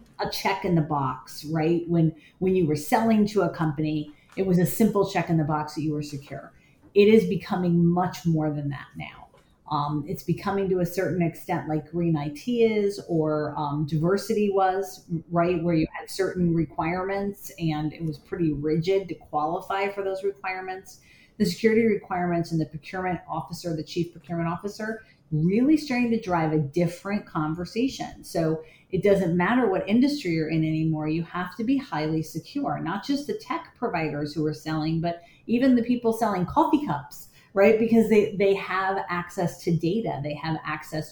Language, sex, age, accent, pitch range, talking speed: English, female, 40-59, American, 155-200 Hz, 180 wpm